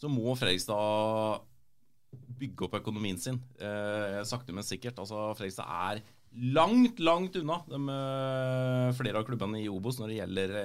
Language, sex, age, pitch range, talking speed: English, male, 30-49, 105-135 Hz, 135 wpm